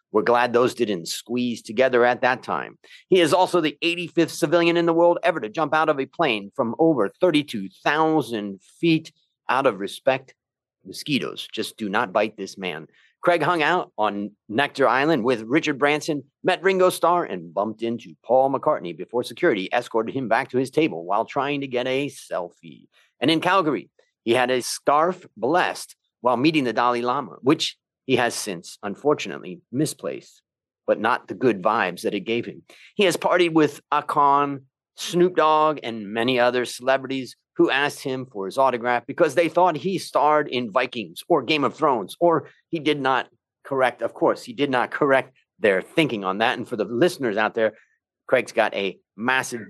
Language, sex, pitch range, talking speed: English, male, 120-165 Hz, 180 wpm